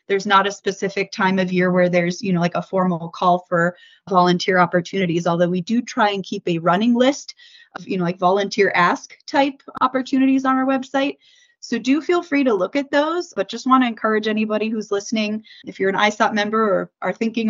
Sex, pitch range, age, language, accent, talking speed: female, 185-245 Hz, 30-49, English, American, 215 wpm